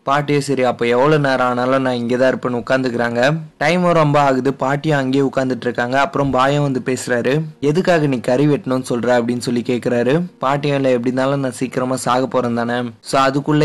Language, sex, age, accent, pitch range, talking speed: Tamil, male, 20-39, native, 120-140 Hz, 170 wpm